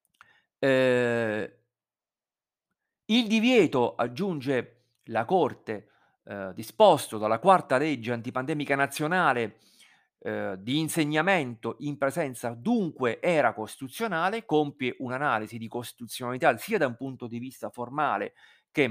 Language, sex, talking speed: Italian, male, 105 wpm